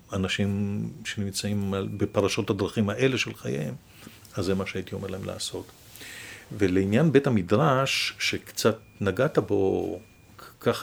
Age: 50-69